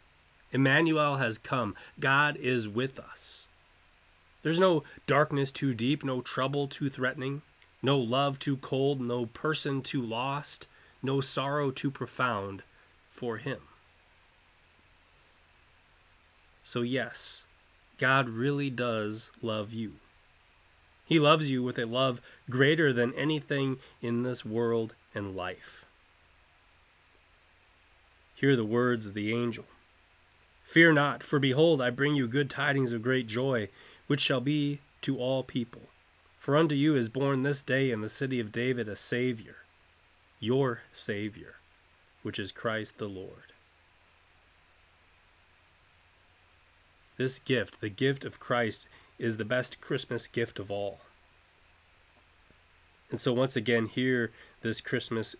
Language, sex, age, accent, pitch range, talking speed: English, male, 30-49, American, 90-130 Hz, 125 wpm